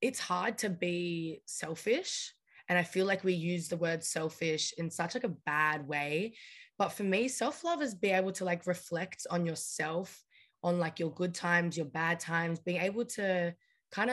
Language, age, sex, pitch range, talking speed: English, 20-39, female, 170-200 Hz, 185 wpm